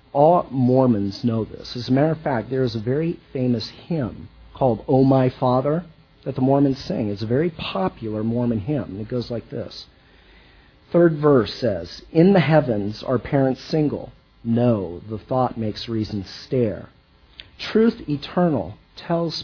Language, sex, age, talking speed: English, male, 40-59, 155 wpm